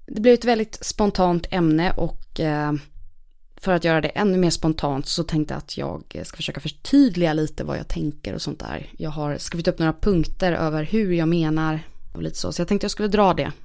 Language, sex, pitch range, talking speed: English, female, 150-185 Hz, 220 wpm